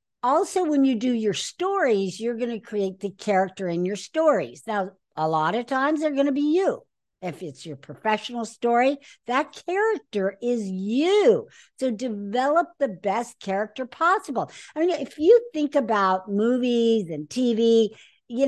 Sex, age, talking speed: female, 60-79, 160 wpm